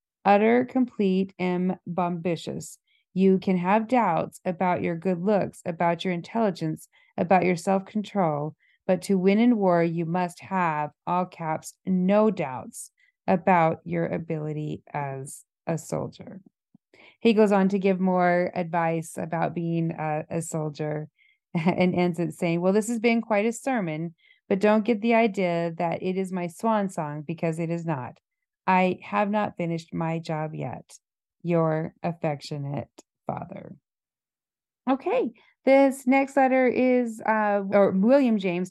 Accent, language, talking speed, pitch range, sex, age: American, English, 145 wpm, 170-210 Hz, female, 30-49